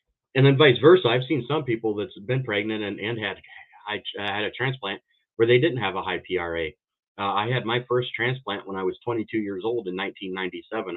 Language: English